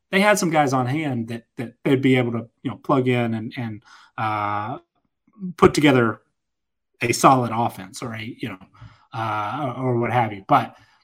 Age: 30-49